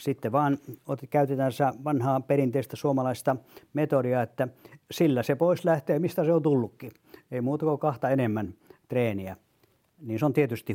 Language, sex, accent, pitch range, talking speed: Finnish, male, native, 115-150 Hz, 145 wpm